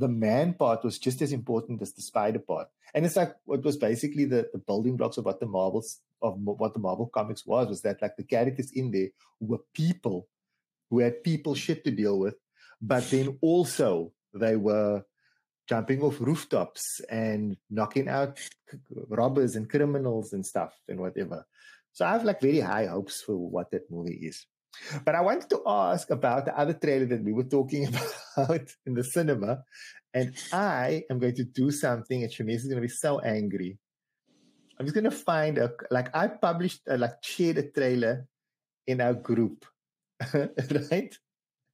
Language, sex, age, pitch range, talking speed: English, male, 30-49, 115-150 Hz, 185 wpm